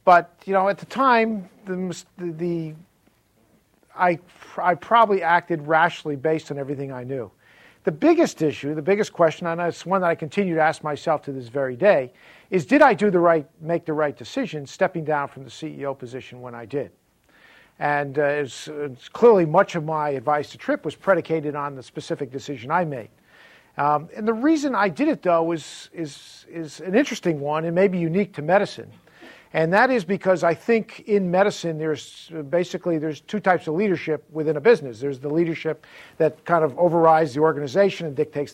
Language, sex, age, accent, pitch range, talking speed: English, male, 50-69, American, 150-190 Hz, 195 wpm